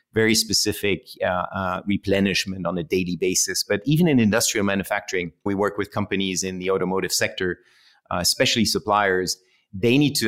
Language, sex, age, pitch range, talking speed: English, male, 30-49, 100-125 Hz, 165 wpm